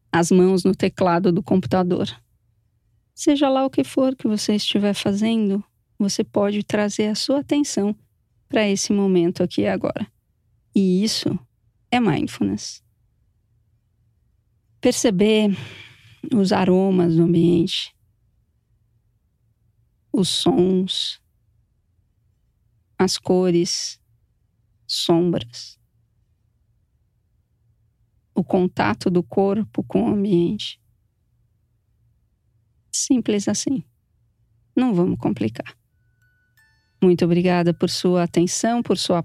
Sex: female